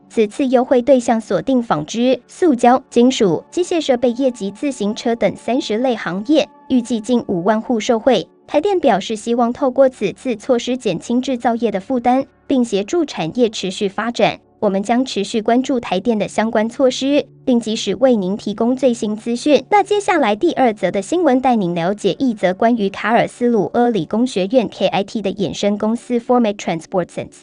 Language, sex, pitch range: Chinese, male, 210-265 Hz